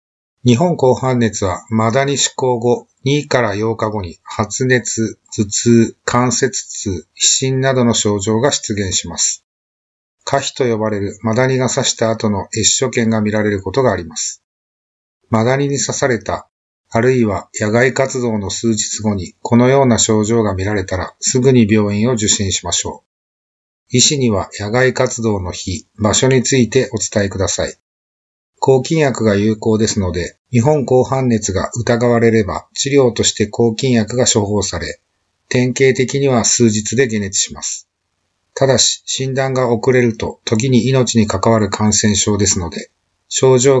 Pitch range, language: 105-125 Hz, Japanese